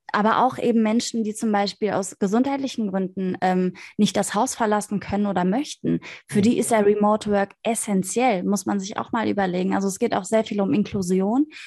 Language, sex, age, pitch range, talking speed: German, female, 20-39, 195-230 Hz, 200 wpm